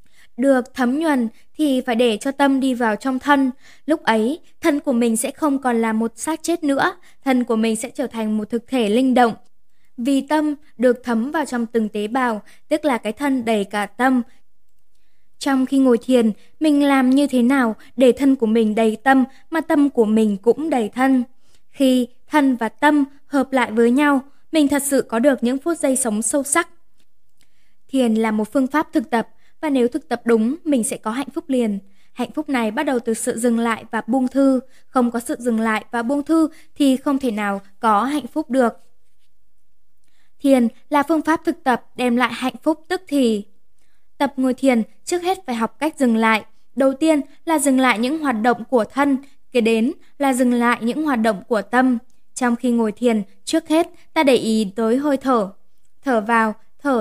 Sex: female